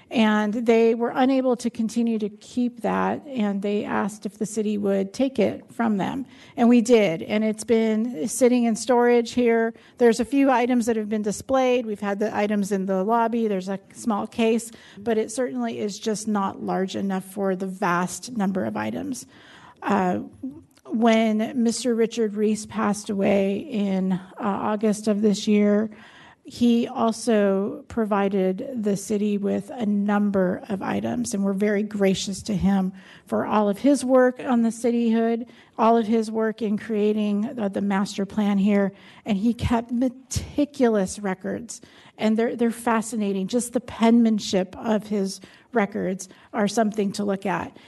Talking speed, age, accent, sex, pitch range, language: 165 wpm, 50-69, American, female, 200-235 Hz, English